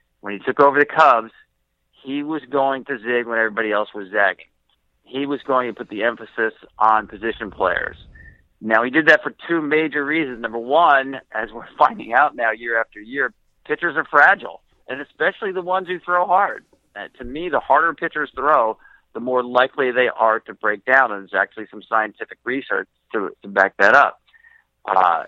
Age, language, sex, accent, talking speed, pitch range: 50-69, English, male, American, 190 wpm, 105-140 Hz